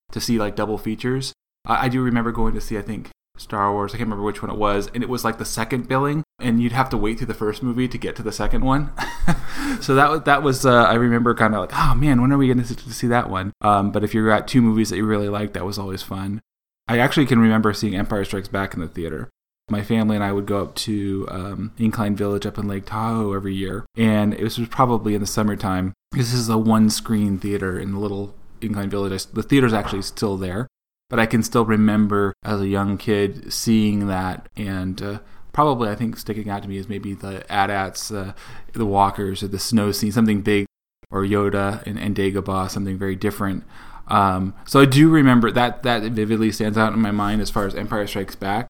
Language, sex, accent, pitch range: English, male, American, 100-115 Hz